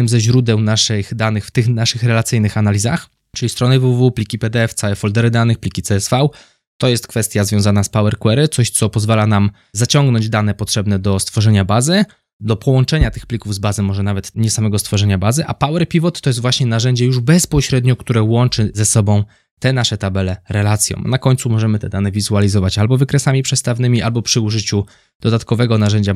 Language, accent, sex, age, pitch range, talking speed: Polish, native, male, 20-39, 105-130 Hz, 180 wpm